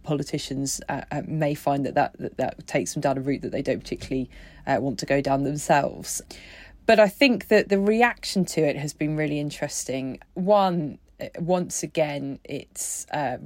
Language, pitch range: English, 145-165 Hz